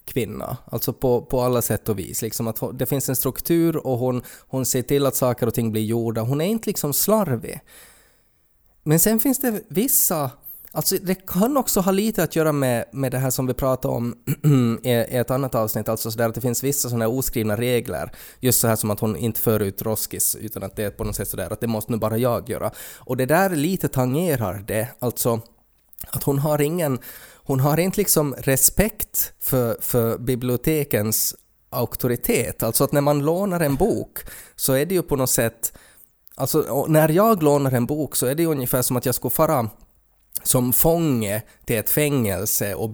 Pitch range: 115-145 Hz